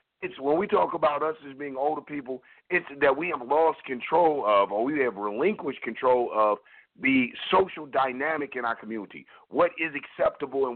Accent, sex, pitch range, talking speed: American, male, 135-165 Hz, 180 wpm